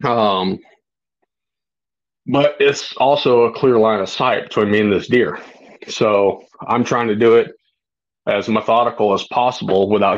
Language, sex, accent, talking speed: English, male, American, 145 wpm